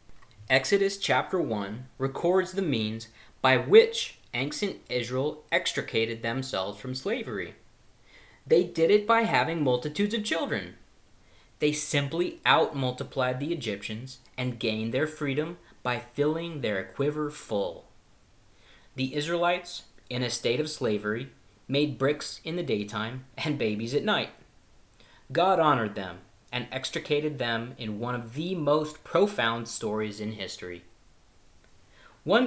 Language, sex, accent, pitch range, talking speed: English, male, American, 110-150 Hz, 125 wpm